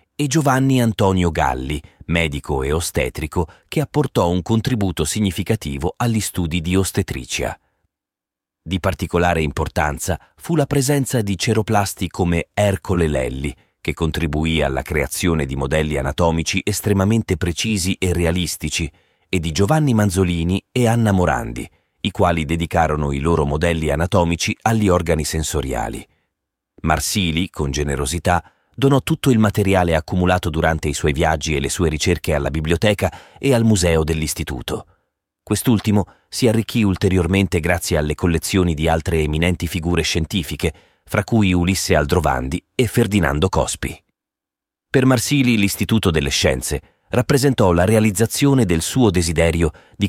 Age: 40-59